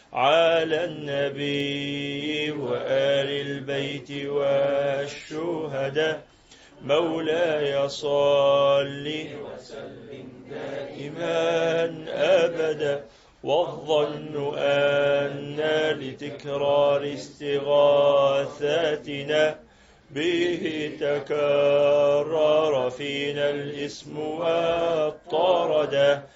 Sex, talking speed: male, 45 wpm